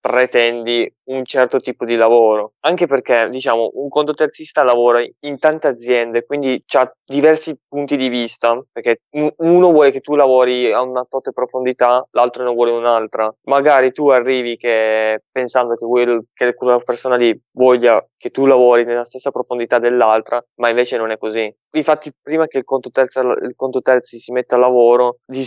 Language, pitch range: Italian, 115-130 Hz